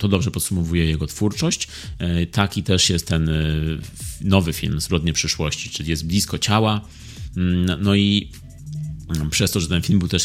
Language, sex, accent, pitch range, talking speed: Polish, male, native, 90-115 Hz, 150 wpm